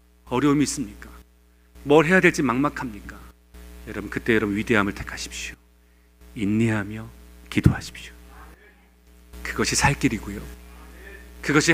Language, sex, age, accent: Korean, male, 40-59, native